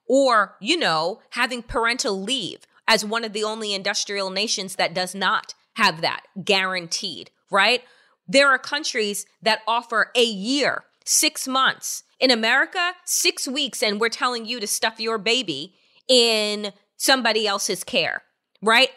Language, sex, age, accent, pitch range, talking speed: English, female, 30-49, American, 210-280 Hz, 145 wpm